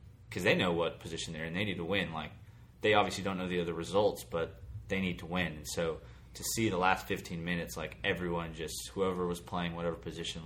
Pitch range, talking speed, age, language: 80-95 Hz, 230 wpm, 20-39, English